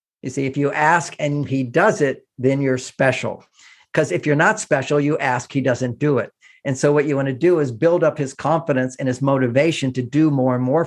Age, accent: 50-69, American